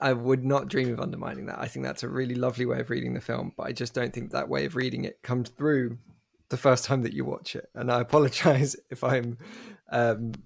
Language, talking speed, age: English, 245 wpm, 20-39